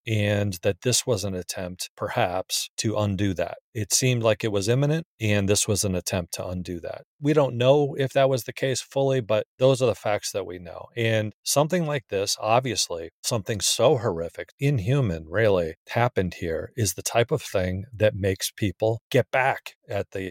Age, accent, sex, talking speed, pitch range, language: 40-59, American, male, 190 wpm, 95-120 Hz, English